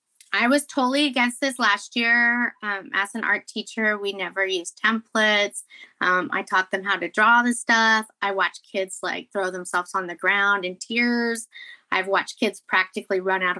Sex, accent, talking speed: female, American, 185 wpm